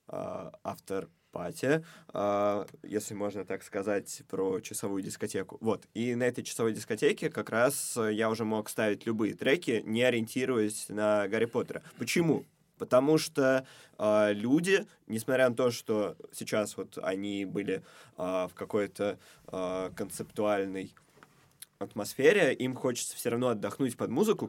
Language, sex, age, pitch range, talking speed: Russian, male, 20-39, 100-125 Hz, 125 wpm